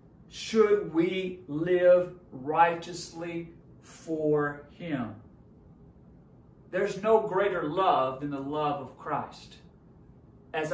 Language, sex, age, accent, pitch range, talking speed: English, male, 40-59, American, 130-170 Hz, 90 wpm